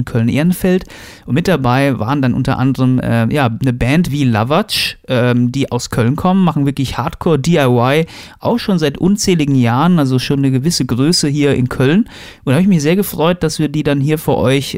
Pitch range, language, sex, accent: 130-155 Hz, German, male, German